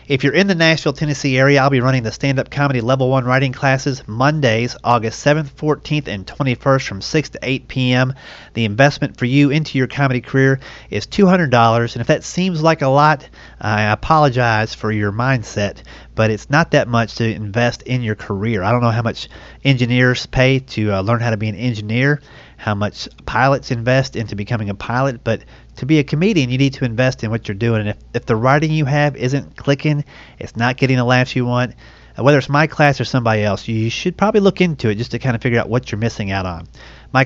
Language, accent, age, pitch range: English, American, 30-49, 115-145 Hz